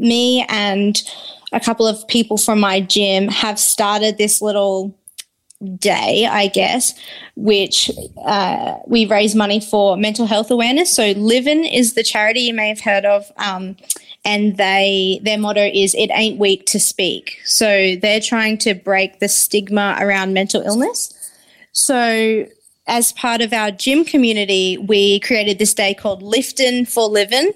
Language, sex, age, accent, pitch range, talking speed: English, female, 20-39, Australian, 200-230 Hz, 155 wpm